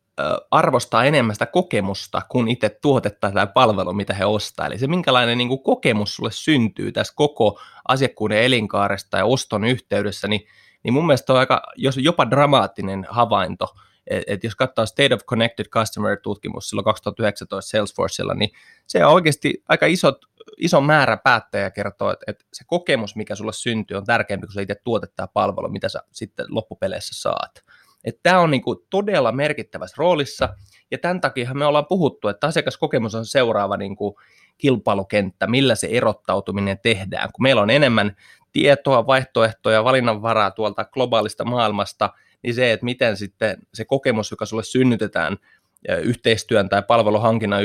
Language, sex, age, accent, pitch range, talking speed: Finnish, male, 20-39, native, 100-130 Hz, 145 wpm